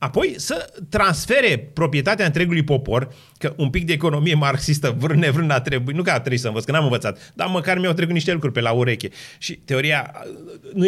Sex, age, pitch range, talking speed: male, 30-49, 120-160 Hz, 205 wpm